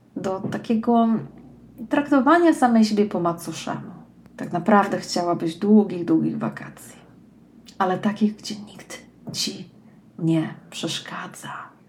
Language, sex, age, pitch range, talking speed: Polish, female, 30-49, 185-230 Hz, 100 wpm